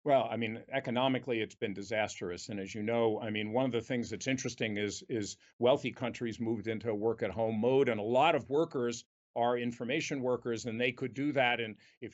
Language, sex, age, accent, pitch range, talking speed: English, male, 50-69, American, 115-145 Hz, 220 wpm